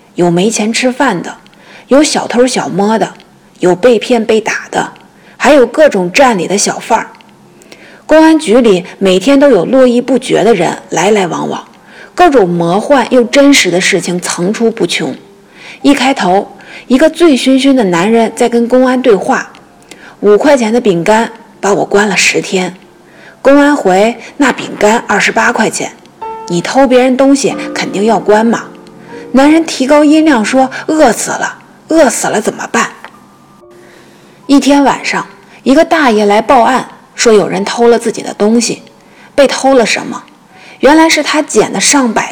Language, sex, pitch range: Chinese, female, 205-275 Hz